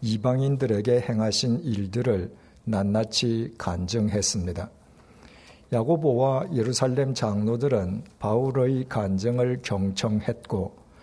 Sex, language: male, Korean